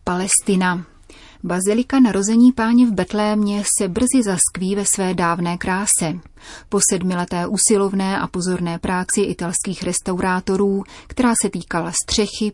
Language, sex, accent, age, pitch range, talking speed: Czech, female, native, 30-49, 180-205 Hz, 120 wpm